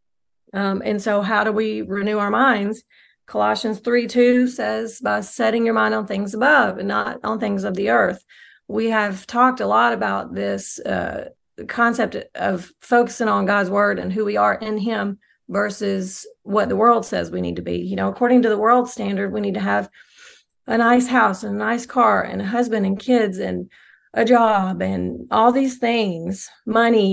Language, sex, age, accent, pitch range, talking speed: English, female, 40-59, American, 195-235 Hz, 190 wpm